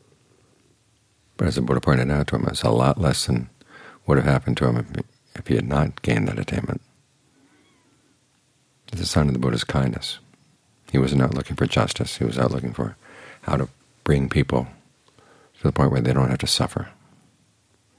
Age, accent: 50-69, American